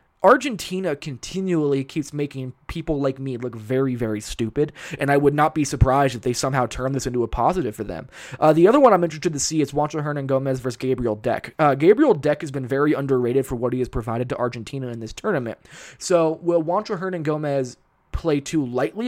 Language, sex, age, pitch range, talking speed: English, male, 20-39, 130-165 Hz, 210 wpm